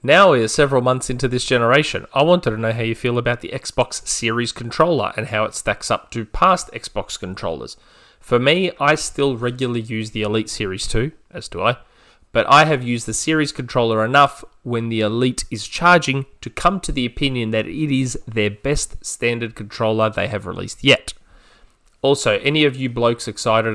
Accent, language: Australian, English